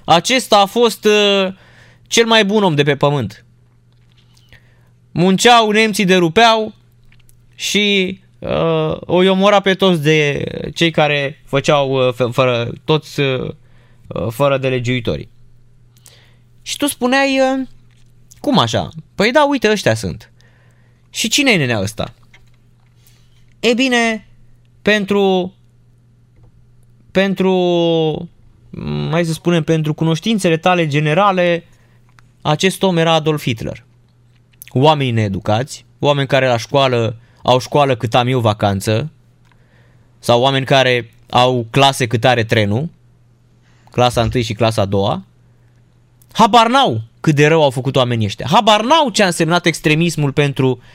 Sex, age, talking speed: male, 20-39, 125 wpm